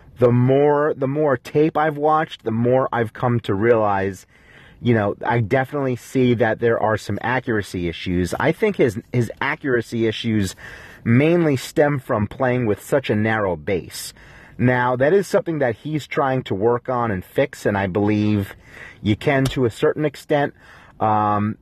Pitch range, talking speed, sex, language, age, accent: 105-135 Hz, 180 wpm, male, English, 30-49, American